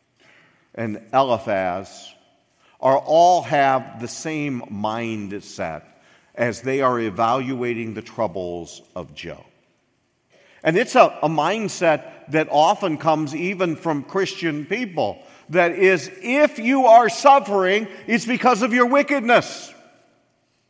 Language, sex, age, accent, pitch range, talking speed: English, male, 50-69, American, 130-215 Hz, 115 wpm